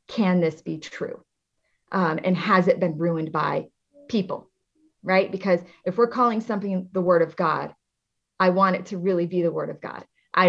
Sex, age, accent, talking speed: female, 30-49, American, 190 wpm